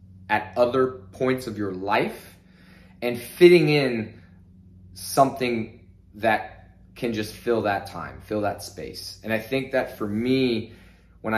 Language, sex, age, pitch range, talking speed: English, male, 20-39, 95-120 Hz, 135 wpm